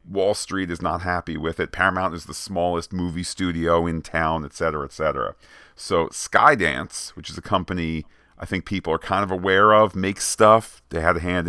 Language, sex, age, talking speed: English, male, 40-59, 205 wpm